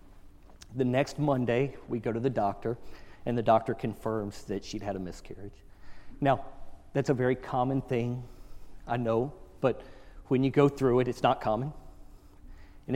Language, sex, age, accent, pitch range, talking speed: English, male, 40-59, American, 90-140 Hz, 160 wpm